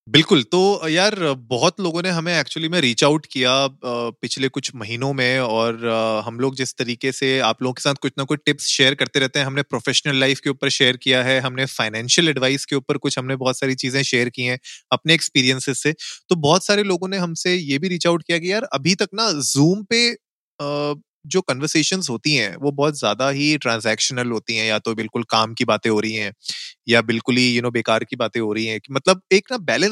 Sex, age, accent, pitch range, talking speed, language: male, 30-49, native, 125-155 Hz, 200 wpm, Hindi